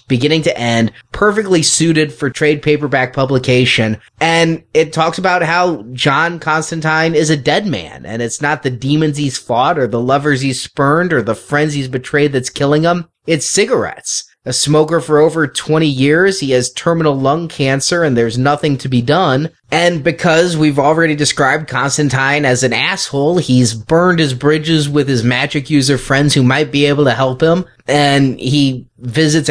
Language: English